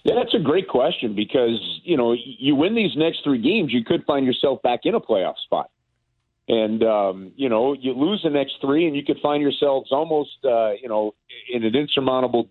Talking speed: 210 wpm